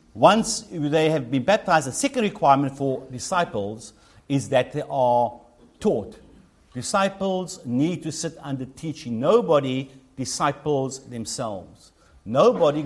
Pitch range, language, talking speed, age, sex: 120-160 Hz, English, 115 wpm, 60-79, male